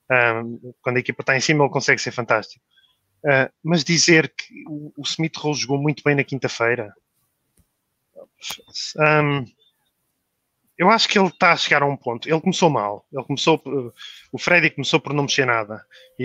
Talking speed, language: 175 wpm, Portuguese